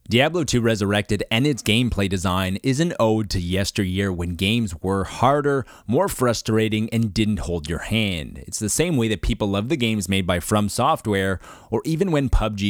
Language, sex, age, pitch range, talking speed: English, male, 30-49, 95-120 Hz, 190 wpm